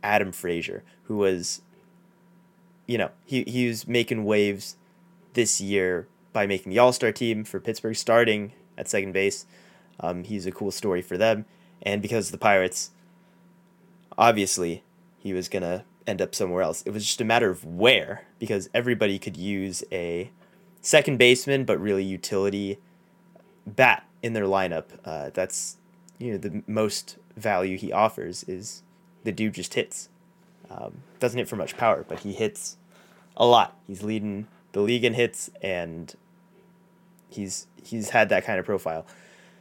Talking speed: 160 wpm